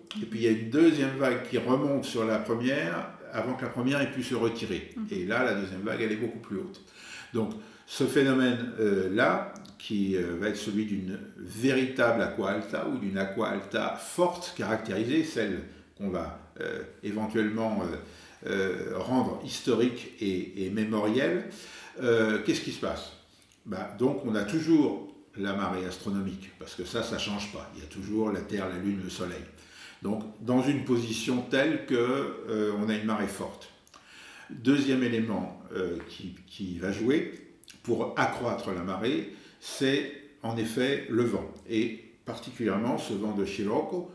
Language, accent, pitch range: French, French, 100-125 Hz